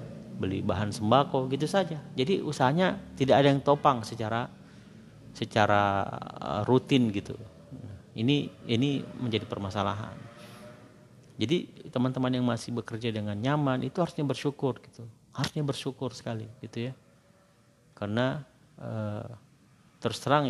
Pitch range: 105-130 Hz